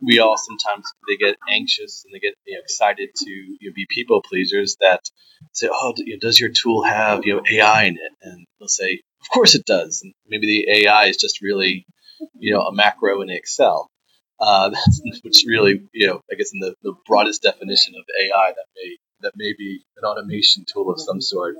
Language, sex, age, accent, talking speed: English, male, 30-49, American, 210 wpm